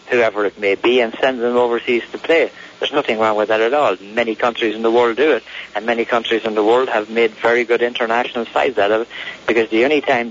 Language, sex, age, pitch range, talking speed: English, male, 50-69, 110-125 Hz, 250 wpm